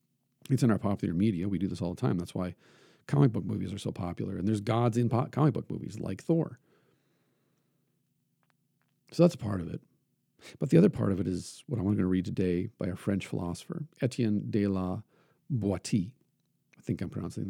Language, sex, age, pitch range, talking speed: English, male, 50-69, 100-145 Hz, 200 wpm